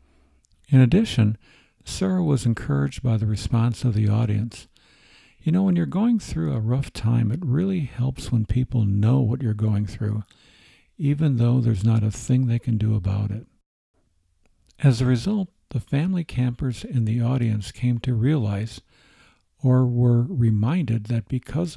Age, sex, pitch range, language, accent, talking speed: 60-79, male, 110-135 Hz, English, American, 160 wpm